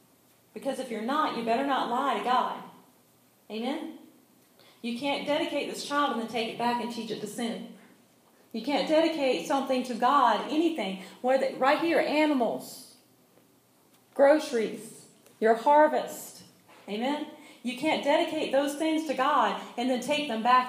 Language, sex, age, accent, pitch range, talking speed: English, female, 40-59, American, 225-275 Hz, 150 wpm